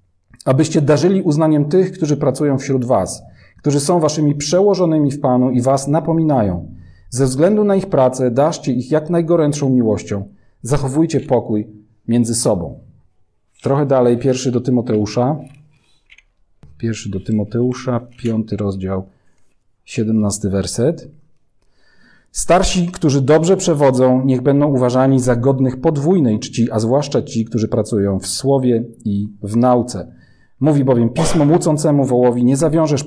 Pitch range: 110-145 Hz